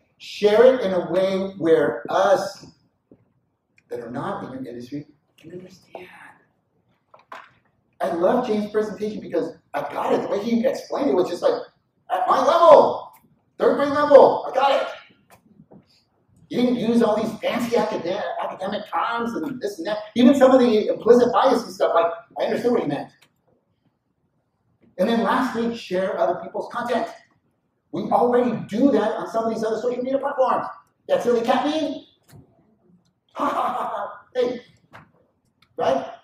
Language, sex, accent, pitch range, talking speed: English, male, American, 180-245 Hz, 150 wpm